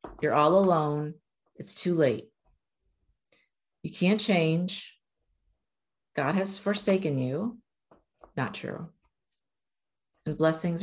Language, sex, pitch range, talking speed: English, female, 155-195 Hz, 95 wpm